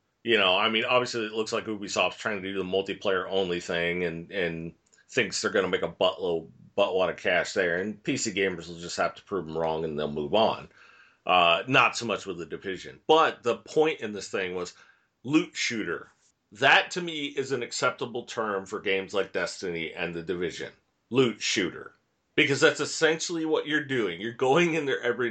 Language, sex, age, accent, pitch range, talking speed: English, male, 40-59, American, 100-135 Hz, 200 wpm